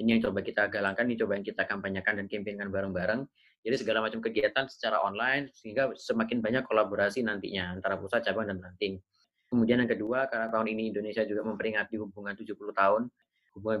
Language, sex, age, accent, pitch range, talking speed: Indonesian, male, 30-49, native, 100-120 Hz, 185 wpm